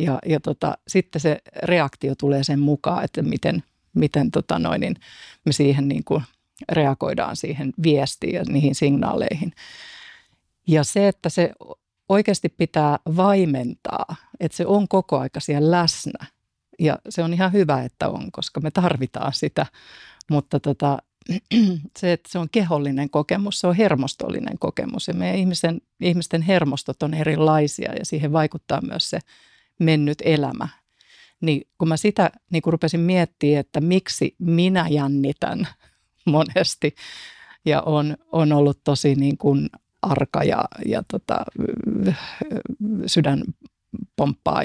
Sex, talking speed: female, 135 wpm